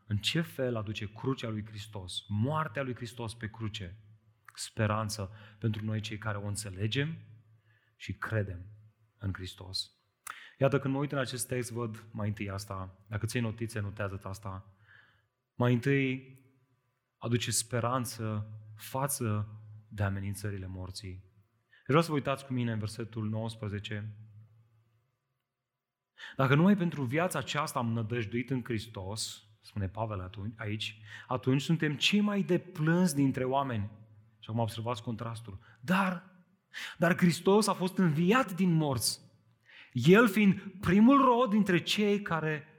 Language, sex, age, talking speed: Romanian, male, 30-49, 135 wpm